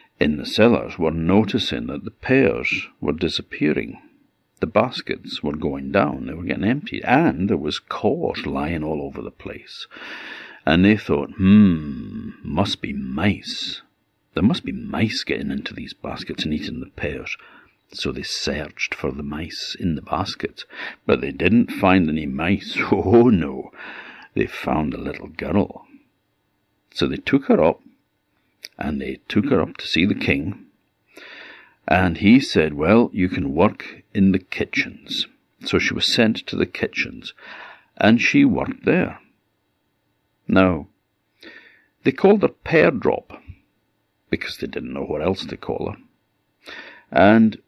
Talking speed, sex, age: 150 wpm, male, 60-79